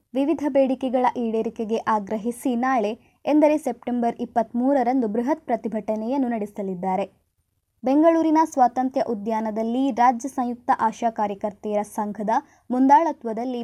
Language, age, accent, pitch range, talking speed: Kannada, 20-39, native, 220-265 Hz, 90 wpm